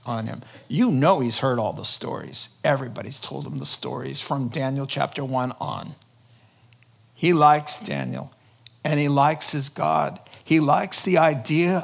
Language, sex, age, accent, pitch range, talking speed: English, male, 50-69, American, 125-180 Hz, 155 wpm